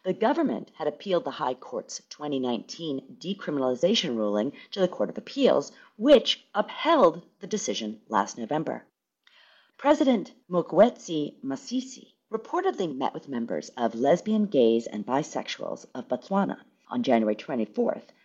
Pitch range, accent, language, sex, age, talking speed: 140-230 Hz, American, English, female, 40-59, 125 wpm